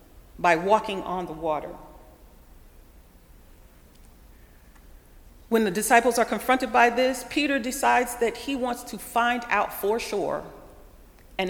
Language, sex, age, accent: English, female, 40-59, American